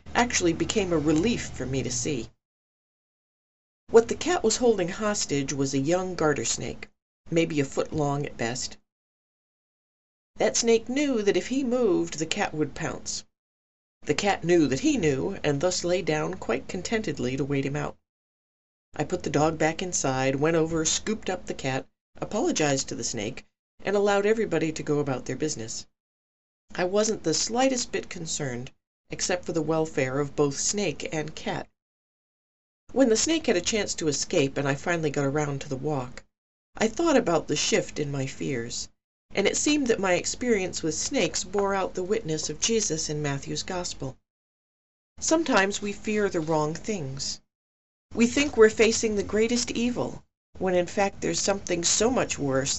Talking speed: 175 wpm